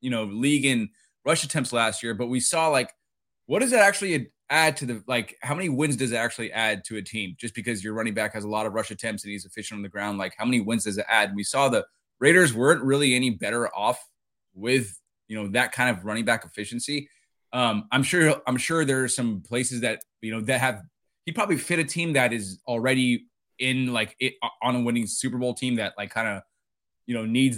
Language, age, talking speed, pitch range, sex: English, 20-39, 240 wpm, 110-130 Hz, male